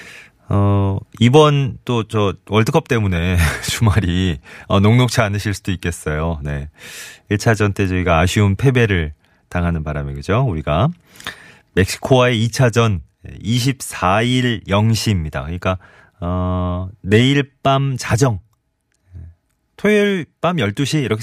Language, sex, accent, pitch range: Korean, male, native, 90-125 Hz